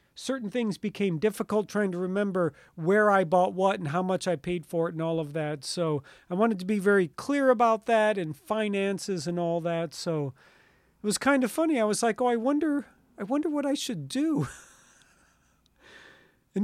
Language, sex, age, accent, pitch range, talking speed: English, male, 40-59, American, 175-255 Hz, 200 wpm